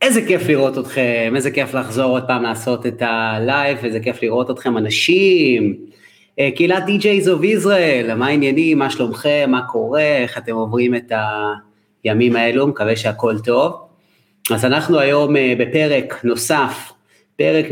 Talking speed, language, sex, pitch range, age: 140 wpm, Hebrew, male, 115-140 Hz, 30-49